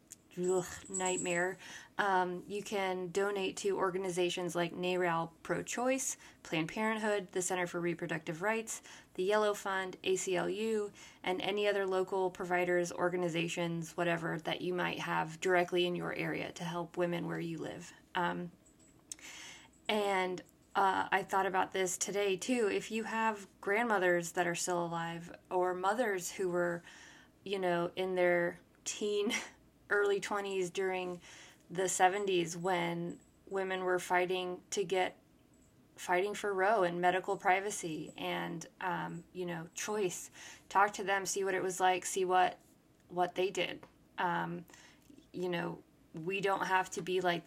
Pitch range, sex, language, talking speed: 175-195 Hz, female, English, 140 wpm